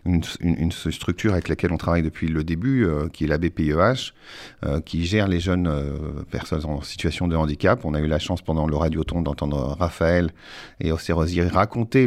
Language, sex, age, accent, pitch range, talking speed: Italian, male, 40-59, French, 80-105 Hz, 195 wpm